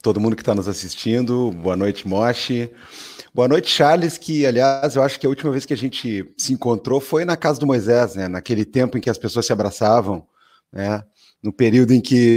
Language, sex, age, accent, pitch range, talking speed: Portuguese, male, 30-49, Brazilian, 115-150 Hz, 215 wpm